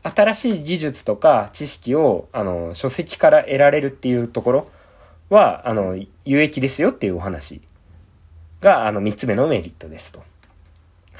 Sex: male